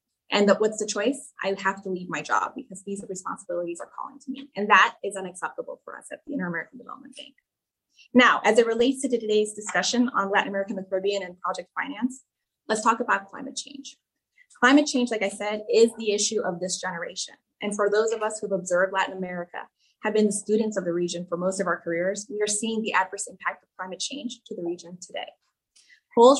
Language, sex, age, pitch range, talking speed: English, female, 20-39, 190-240 Hz, 215 wpm